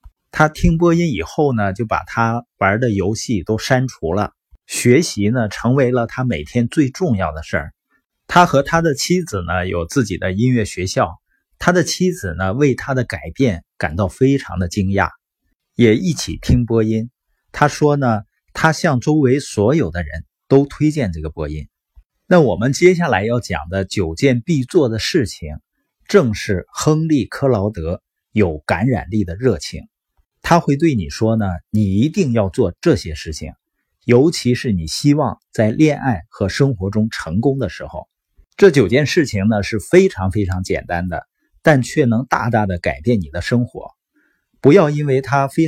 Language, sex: Chinese, male